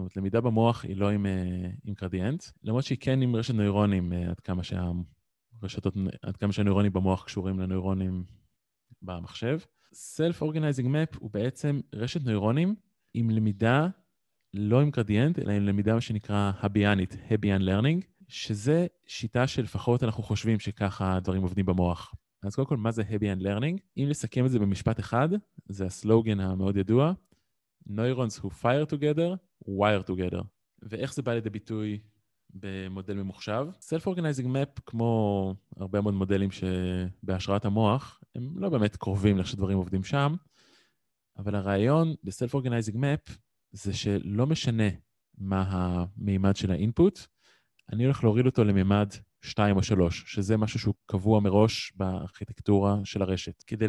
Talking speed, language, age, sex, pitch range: 140 wpm, Hebrew, 20-39, male, 95-125 Hz